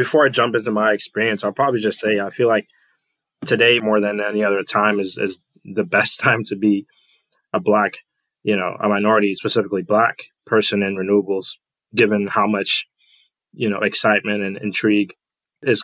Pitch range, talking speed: 100-110 Hz, 175 wpm